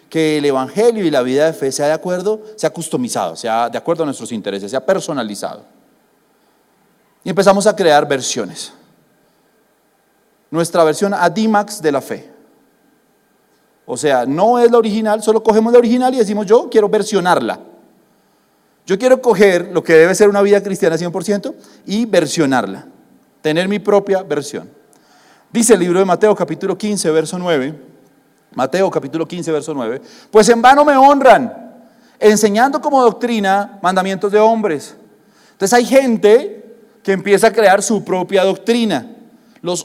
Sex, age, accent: male, 30-49, Colombian